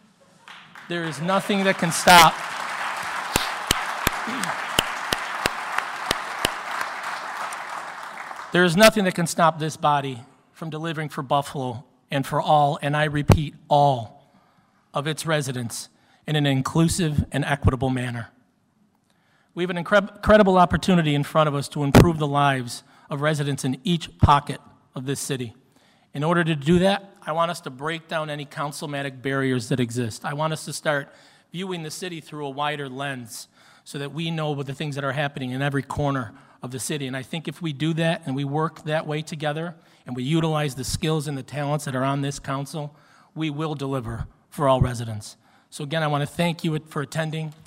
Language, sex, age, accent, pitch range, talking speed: English, male, 40-59, American, 135-160 Hz, 175 wpm